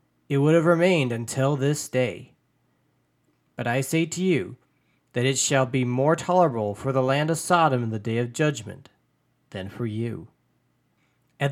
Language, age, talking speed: English, 40-59, 165 wpm